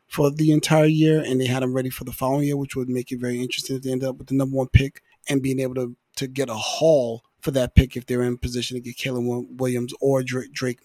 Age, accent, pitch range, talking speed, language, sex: 30-49, American, 130-160 Hz, 265 wpm, English, male